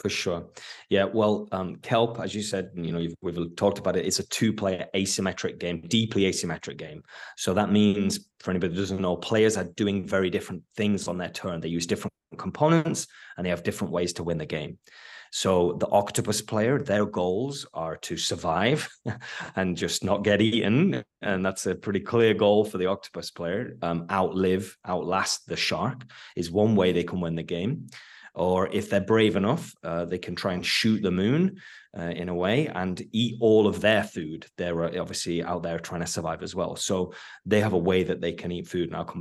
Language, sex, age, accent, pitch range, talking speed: English, male, 20-39, British, 90-110 Hz, 210 wpm